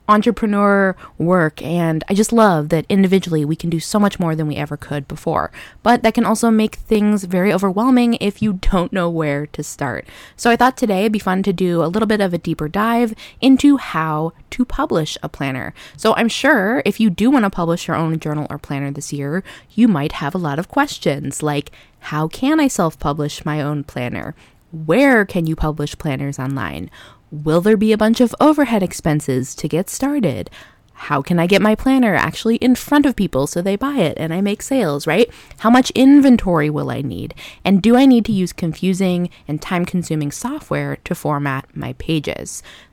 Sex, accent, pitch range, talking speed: female, American, 150-215 Hz, 200 wpm